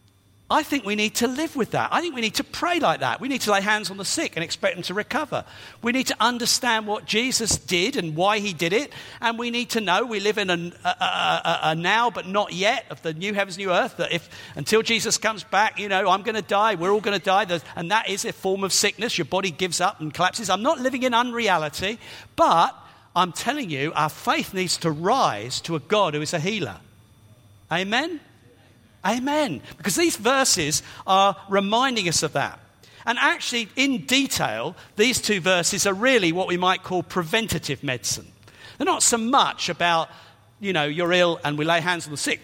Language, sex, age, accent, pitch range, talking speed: English, male, 50-69, British, 165-220 Hz, 220 wpm